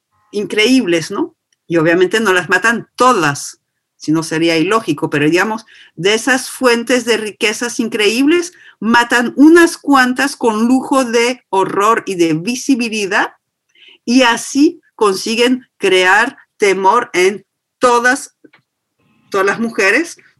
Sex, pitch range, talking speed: female, 185-240 Hz, 120 wpm